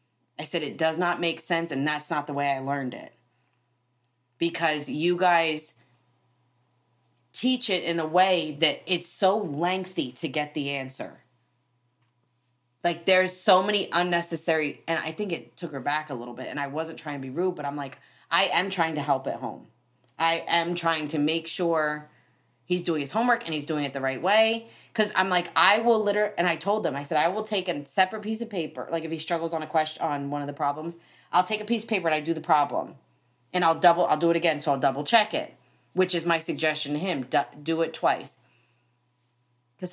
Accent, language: American, English